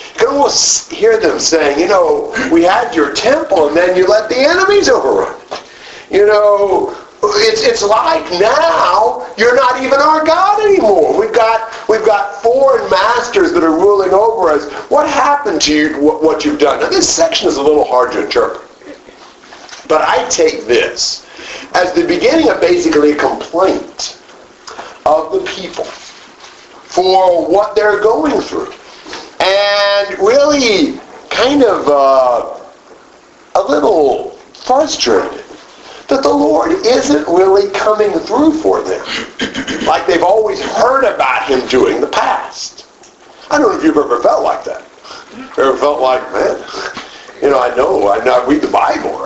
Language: English